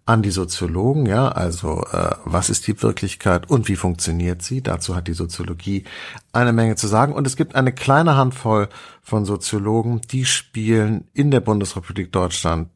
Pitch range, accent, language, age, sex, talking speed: 90-125 Hz, German, German, 50-69, male, 170 wpm